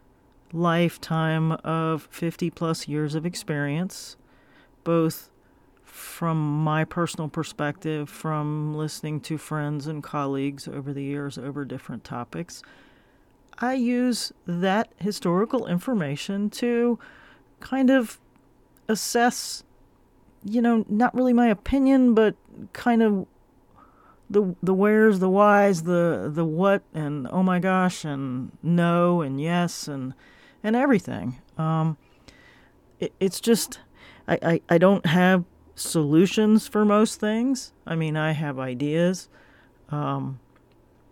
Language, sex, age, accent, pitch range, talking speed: English, male, 40-59, American, 150-195 Hz, 115 wpm